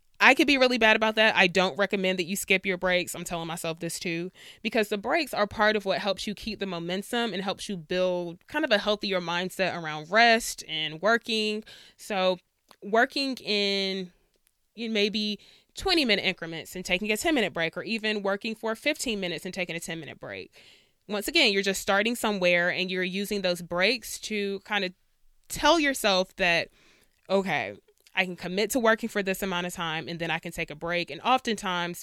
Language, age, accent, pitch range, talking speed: English, 20-39, American, 180-220 Hz, 200 wpm